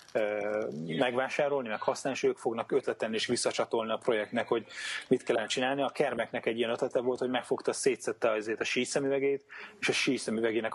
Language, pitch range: Hungarian, 100-140 Hz